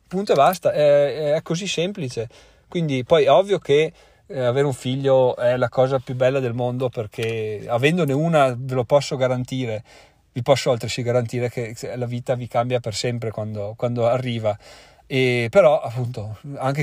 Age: 40-59